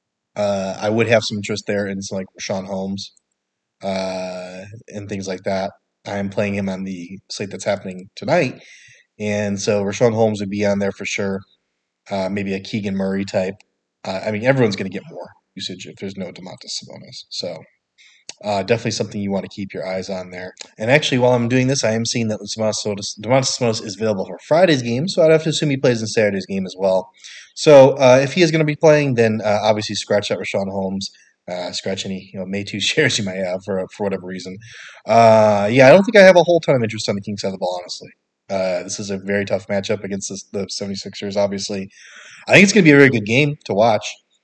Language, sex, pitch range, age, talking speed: English, male, 95-115 Hz, 20-39, 235 wpm